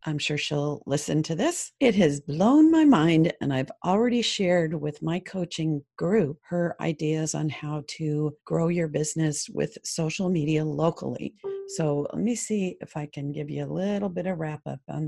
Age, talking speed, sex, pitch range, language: 50-69, 185 wpm, female, 155-215 Hz, English